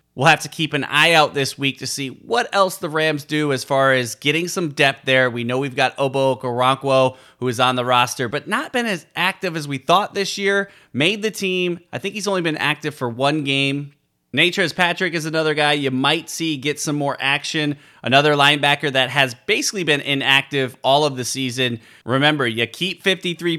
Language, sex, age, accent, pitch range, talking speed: English, male, 30-49, American, 125-155 Hz, 210 wpm